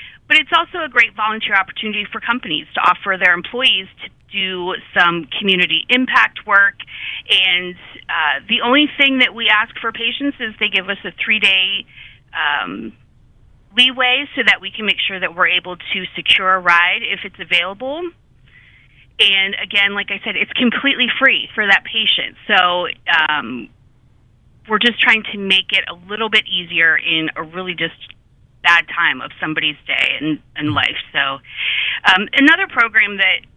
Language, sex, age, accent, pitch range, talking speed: English, female, 30-49, American, 170-220 Hz, 165 wpm